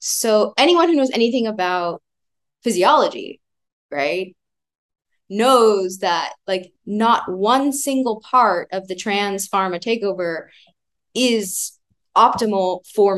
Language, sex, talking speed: English, female, 105 wpm